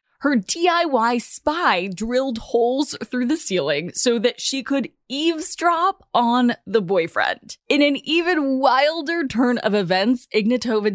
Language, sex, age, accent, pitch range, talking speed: English, female, 20-39, American, 200-310 Hz, 130 wpm